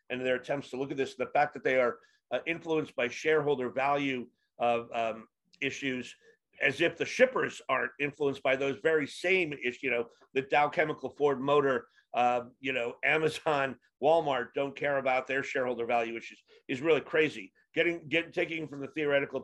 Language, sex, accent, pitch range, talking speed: English, male, American, 130-155 Hz, 180 wpm